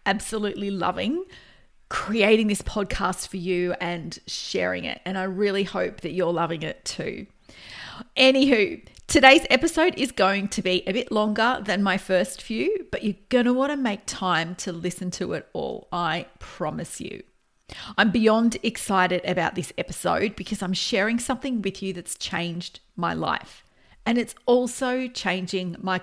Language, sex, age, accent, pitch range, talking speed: English, female, 40-59, Australian, 185-235 Hz, 160 wpm